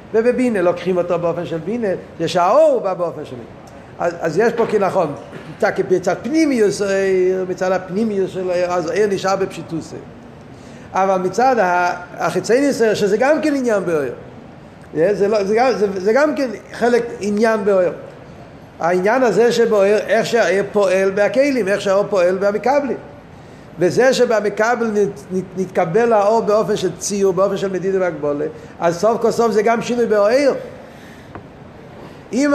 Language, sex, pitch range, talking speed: Hebrew, male, 185-230 Hz, 140 wpm